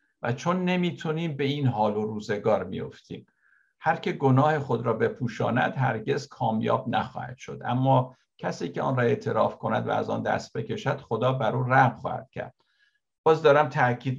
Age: 60-79